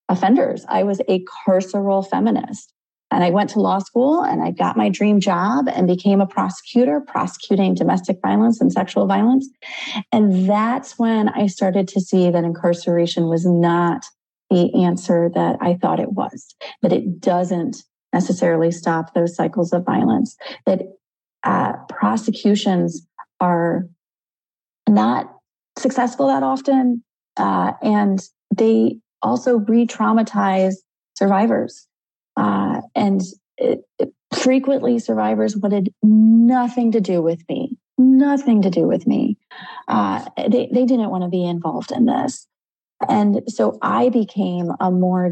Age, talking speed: 30-49, 135 wpm